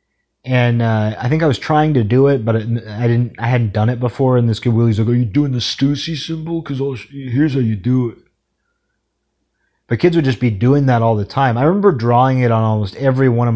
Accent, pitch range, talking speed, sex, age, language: American, 105-130 Hz, 245 wpm, male, 30-49, English